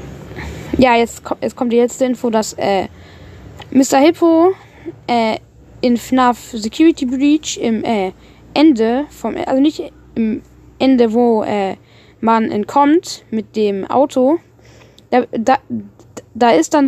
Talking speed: 130 wpm